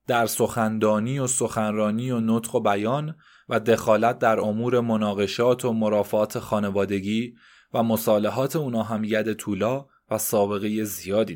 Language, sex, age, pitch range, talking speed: Persian, male, 20-39, 110-140 Hz, 130 wpm